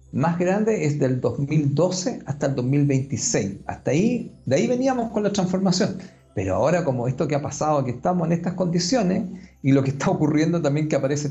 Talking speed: 190 wpm